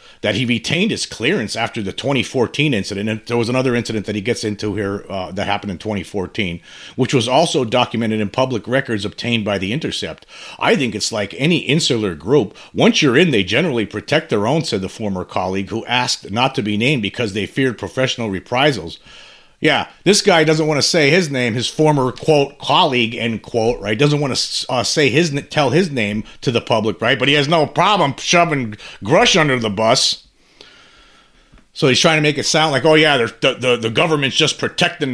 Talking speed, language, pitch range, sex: 205 wpm, English, 110-140 Hz, male